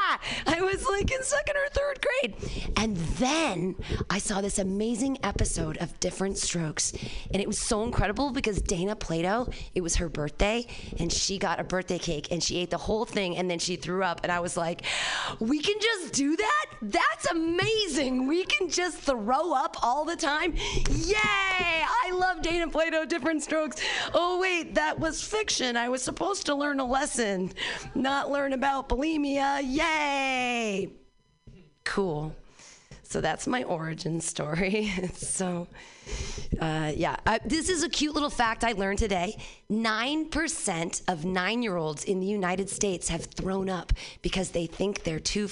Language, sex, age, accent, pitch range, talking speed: English, female, 30-49, American, 190-315 Hz, 165 wpm